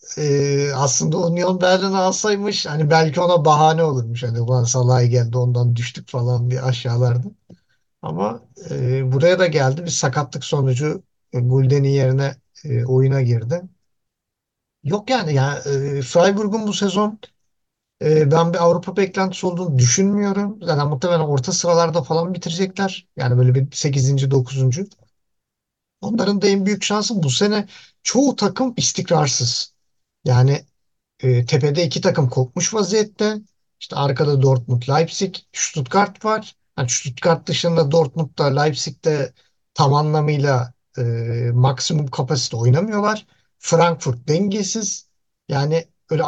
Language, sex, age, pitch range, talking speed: Turkish, male, 50-69, 135-185 Hz, 125 wpm